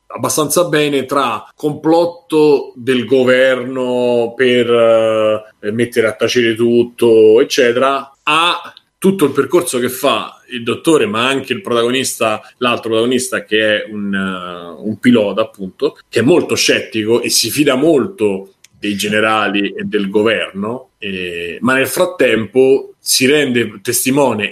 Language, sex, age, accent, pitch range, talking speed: Italian, male, 30-49, native, 110-135 Hz, 125 wpm